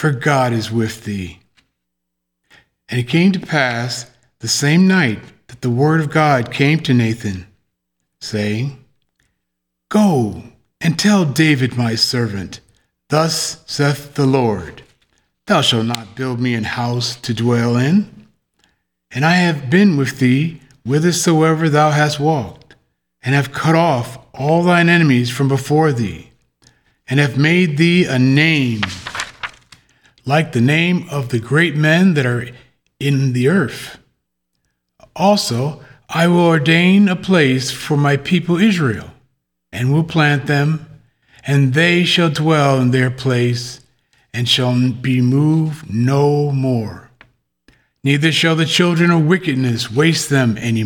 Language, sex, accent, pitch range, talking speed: English, male, American, 120-160 Hz, 135 wpm